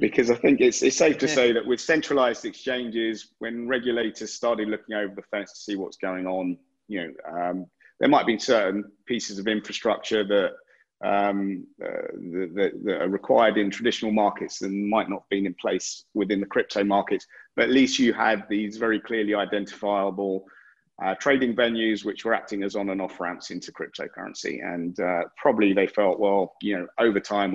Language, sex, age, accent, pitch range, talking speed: English, male, 30-49, British, 95-110 Hz, 190 wpm